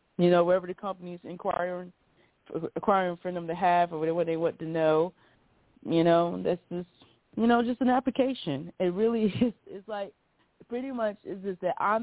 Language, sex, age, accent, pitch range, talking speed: English, female, 30-49, American, 145-175 Hz, 180 wpm